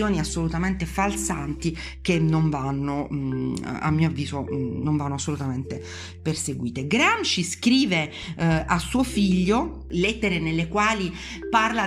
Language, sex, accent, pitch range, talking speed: Italian, female, native, 155-195 Hz, 110 wpm